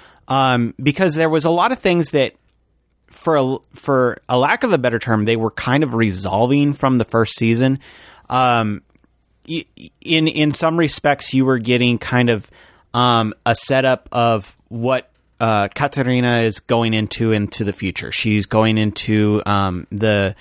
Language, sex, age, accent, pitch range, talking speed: English, male, 30-49, American, 105-125 Hz, 160 wpm